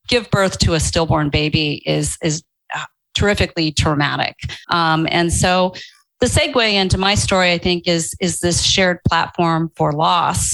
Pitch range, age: 155-180 Hz, 40-59